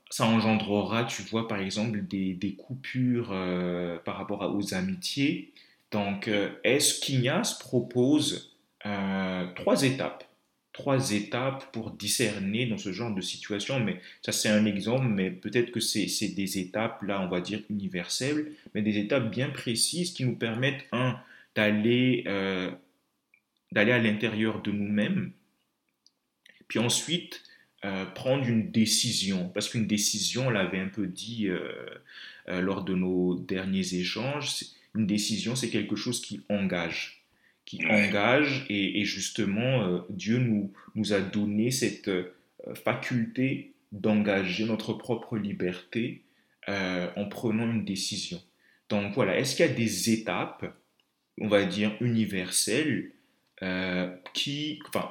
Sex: male